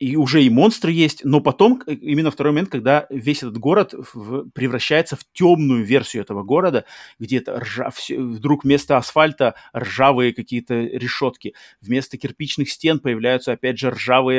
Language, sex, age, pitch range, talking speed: Russian, male, 30-49, 125-150 Hz, 155 wpm